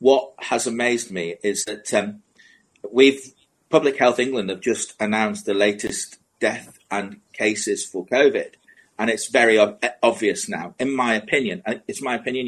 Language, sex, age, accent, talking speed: English, male, 30-49, British, 150 wpm